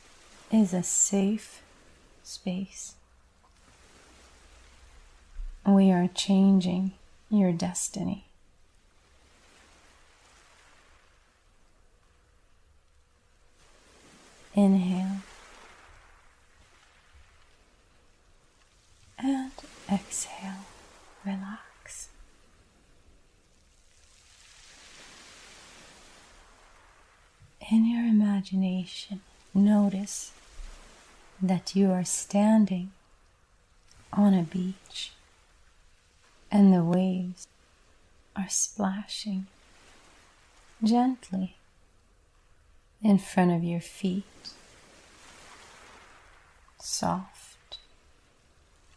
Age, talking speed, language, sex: 30-49, 45 wpm, English, female